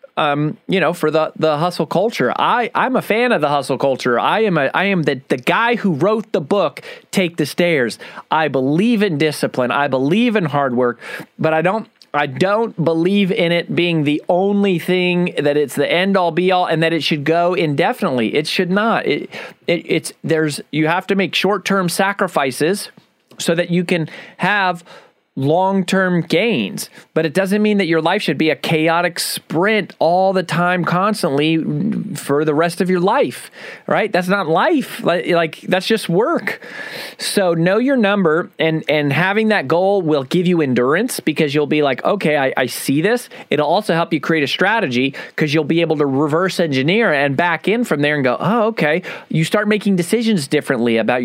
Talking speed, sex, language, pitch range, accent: 195 wpm, male, English, 155-195 Hz, American